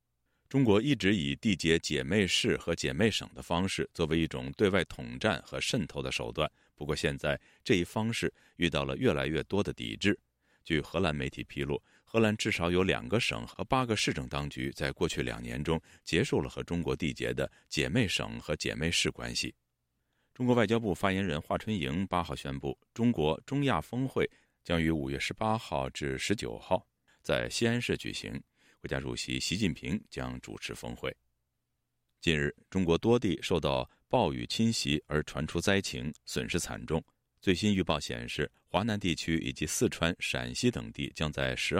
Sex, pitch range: male, 65-100 Hz